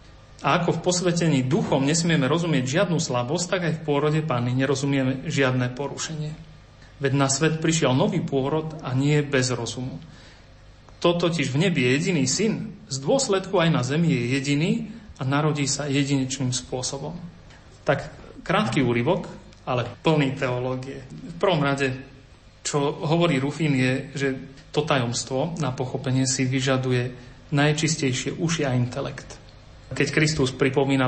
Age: 40-59